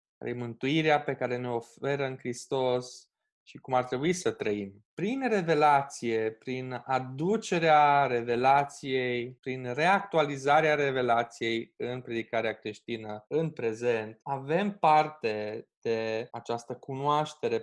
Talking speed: 105 wpm